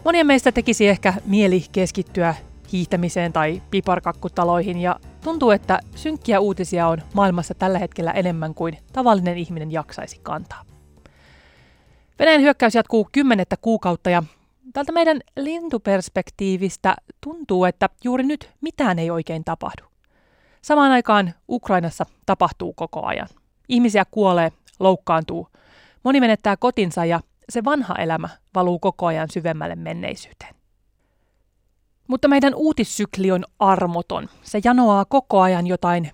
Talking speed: 120 wpm